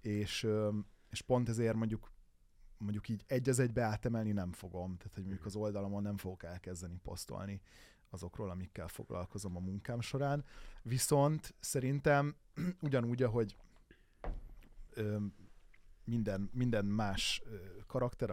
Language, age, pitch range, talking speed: Hungarian, 20-39, 95-115 Hz, 120 wpm